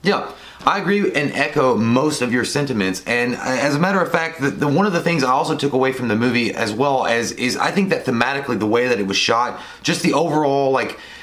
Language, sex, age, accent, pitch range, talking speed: English, male, 30-49, American, 120-155 Hz, 245 wpm